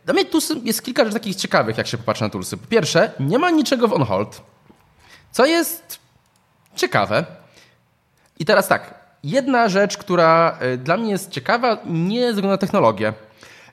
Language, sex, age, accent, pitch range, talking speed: Polish, male, 20-39, native, 135-195 Hz, 165 wpm